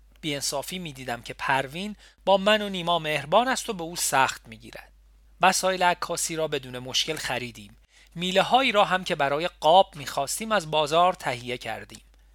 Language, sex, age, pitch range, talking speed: Persian, male, 40-59, 125-185 Hz, 160 wpm